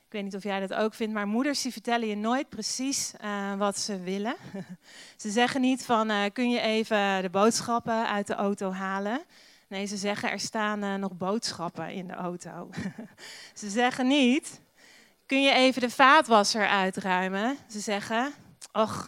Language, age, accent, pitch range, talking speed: Dutch, 40-59, Dutch, 195-235 Hz, 175 wpm